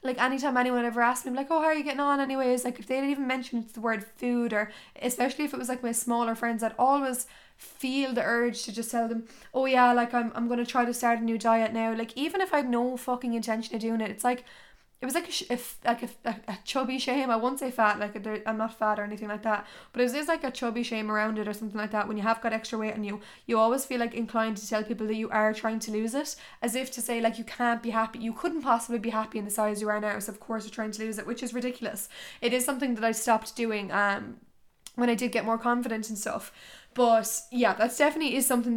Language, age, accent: English, 10-29, Irish